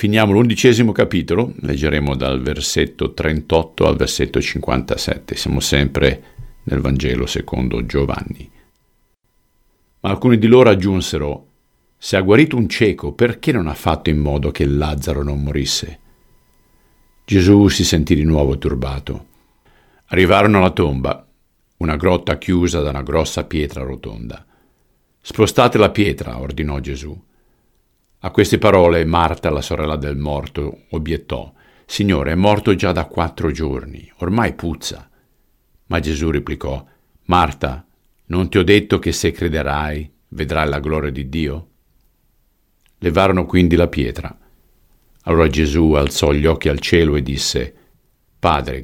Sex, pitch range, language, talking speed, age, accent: male, 70-90 Hz, Italian, 130 wpm, 50-69, native